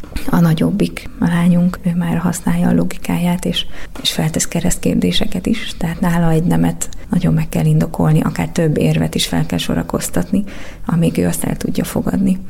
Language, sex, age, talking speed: Hungarian, female, 30-49, 170 wpm